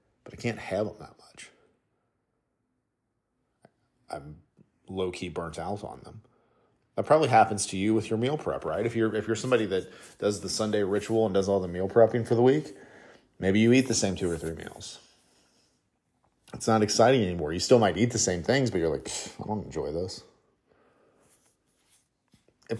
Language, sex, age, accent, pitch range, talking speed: English, male, 40-59, American, 90-115 Hz, 185 wpm